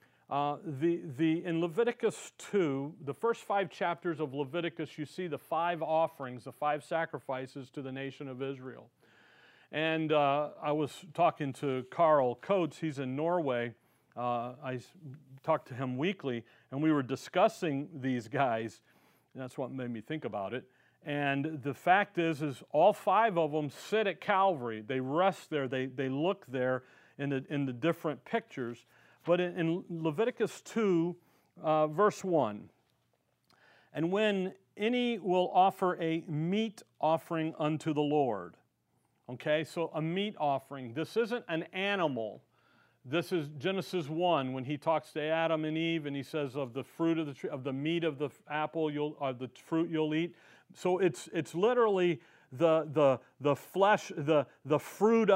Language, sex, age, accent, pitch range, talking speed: English, male, 40-59, American, 135-175 Hz, 160 wpm